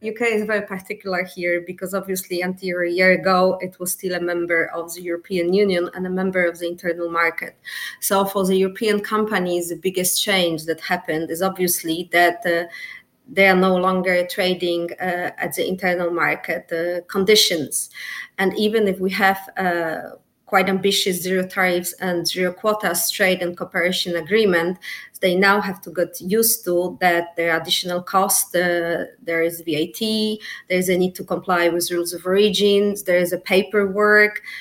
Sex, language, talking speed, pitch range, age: female, English, 170 wpm, 175-195 Hz, 30-49